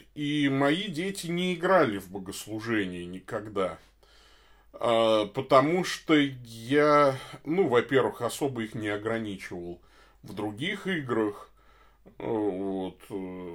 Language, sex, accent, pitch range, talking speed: Russian, male, native, 100-150 Hz, 95 wpm